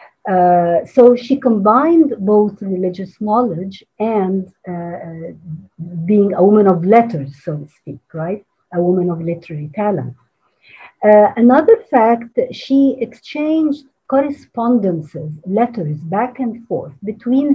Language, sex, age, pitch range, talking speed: English, female, 50-69, 175-240 Hz, 115 wpm